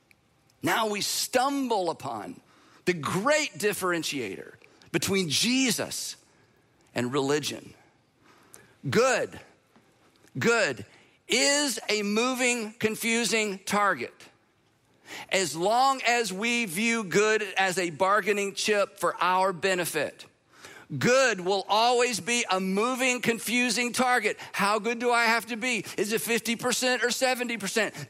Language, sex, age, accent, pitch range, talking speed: English, male, 50-69, American, 195-240 Hz, 110 wpm